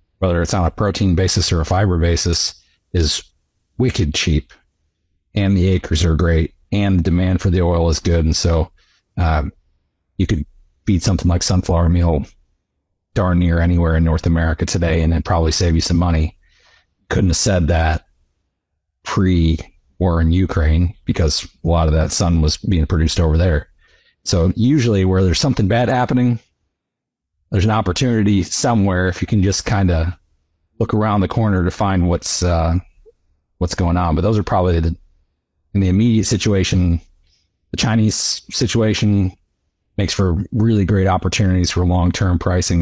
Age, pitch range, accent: 40-59, 80-95 Hz, American